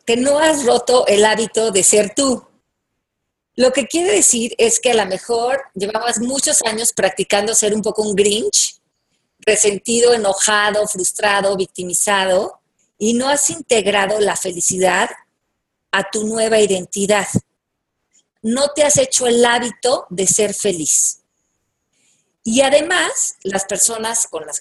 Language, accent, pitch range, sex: Spanish, Mexican, 195-235 Hz, female